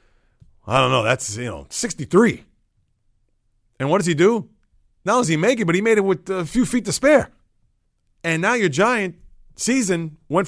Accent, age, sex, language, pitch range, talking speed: American, 30-49, male, English, 115-150 Hz, 195 wpm